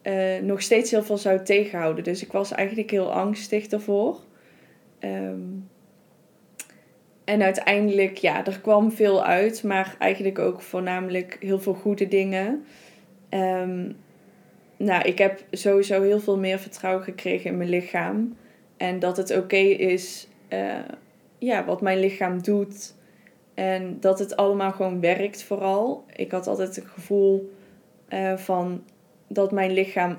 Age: 20-39